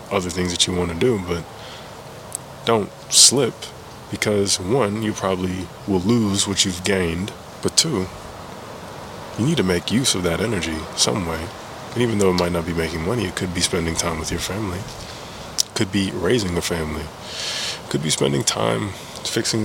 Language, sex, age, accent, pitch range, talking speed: English, male, 20-39, American, 90-110 Hz, 175 wpm